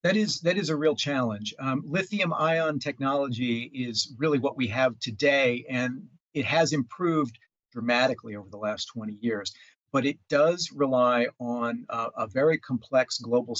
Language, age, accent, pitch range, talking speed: English, 50-69, American, 120-140 Hz, 165 wpm